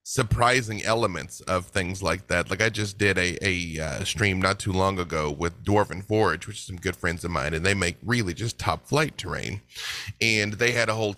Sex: male